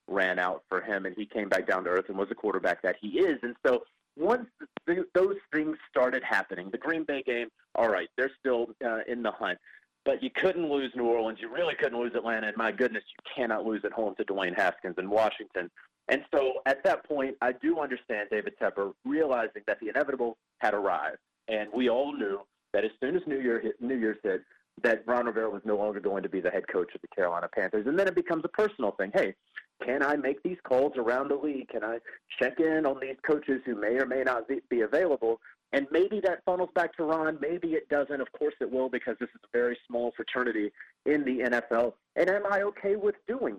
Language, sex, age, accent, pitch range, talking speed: English, male, 30-49, American, 120-180 Hz, 230 wpm